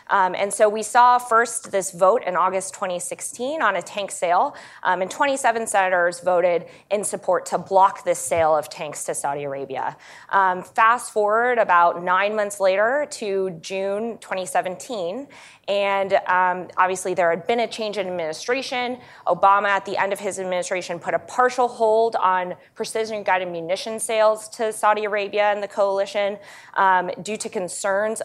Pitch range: 175-215 Hz